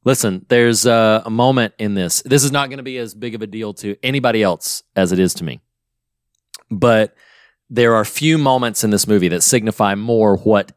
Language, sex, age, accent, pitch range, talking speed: English, male, 30-49, American, 105-135 Hz, 210 wpm